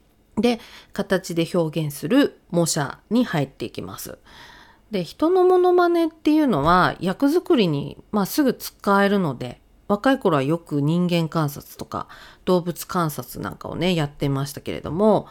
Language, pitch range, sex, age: Japanese, 150-210 Hz, female, 40-59